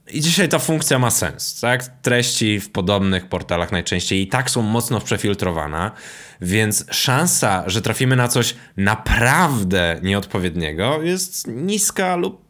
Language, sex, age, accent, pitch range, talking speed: Polish, male, 20-39, native, 100-135 Hz, 135 wpm